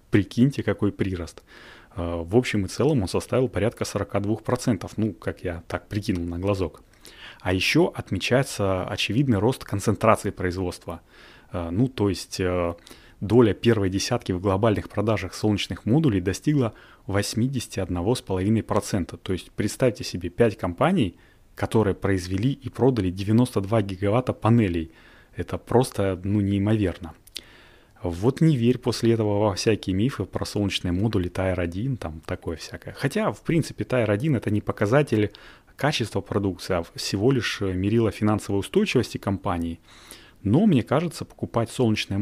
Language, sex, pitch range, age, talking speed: Russian, male, 95-115 Hz, 30-49, 130 wpm